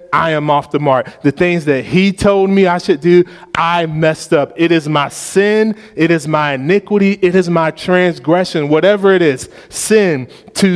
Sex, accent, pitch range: male, American, 160-215 Hz